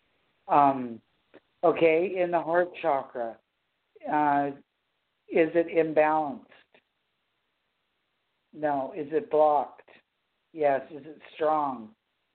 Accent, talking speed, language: American, 85 wpm, English